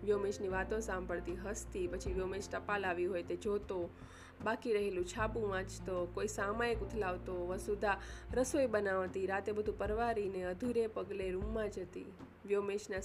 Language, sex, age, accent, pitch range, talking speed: Gujarati, female, 20-39, native, 180-220 Hz, 135 wpm